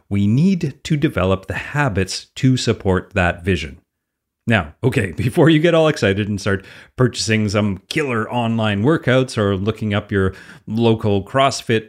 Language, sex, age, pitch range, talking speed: English, male, 30-49, 105-145 Hz, 150 wpm